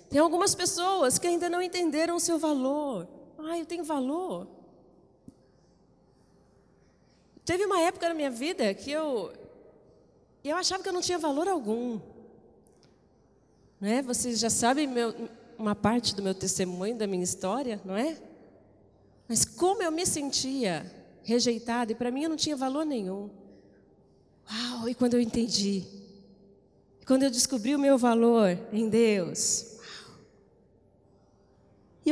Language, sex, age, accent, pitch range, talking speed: Portuguese, female, 30-49, Brazilian, 200-285 Hz, 140 wpm